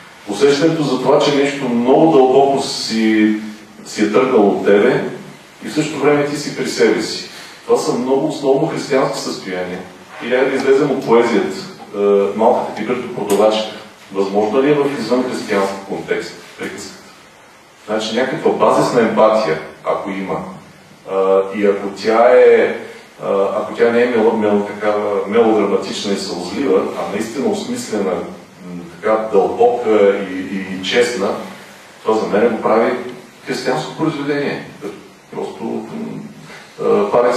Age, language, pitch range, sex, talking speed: 40-59, Bulgarian, 105-140 Hz, male, 130 wpm